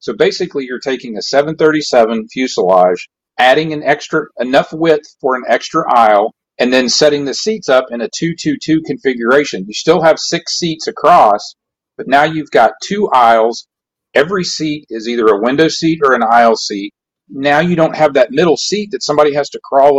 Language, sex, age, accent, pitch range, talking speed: English, male, 40-59, American, 120-170 Hz, 185 wpm